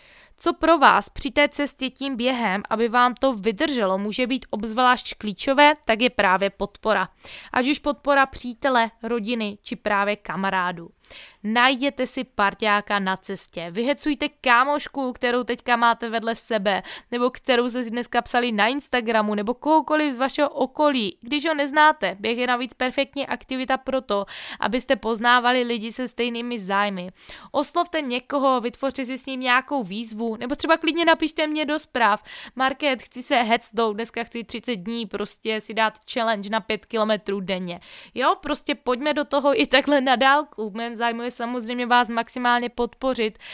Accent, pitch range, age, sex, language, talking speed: native, 220-265 Hz, 20-39, female, Czech, 160 wpm